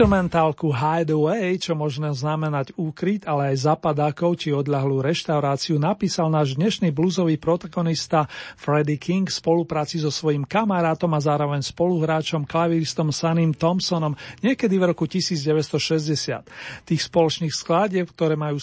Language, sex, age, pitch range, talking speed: Slovak, male, 40-59, 150-185 Hz, 120 wpm